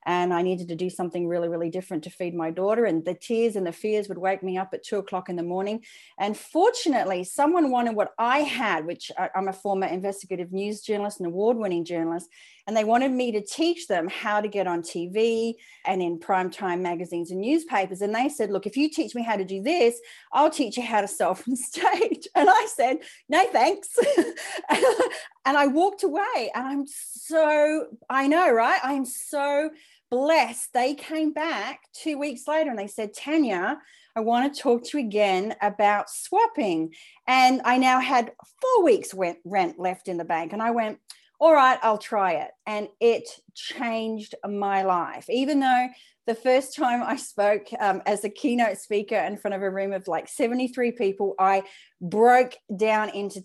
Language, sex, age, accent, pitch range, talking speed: English, female, 40-59, Australian, 195-275 Hz, 190 wpm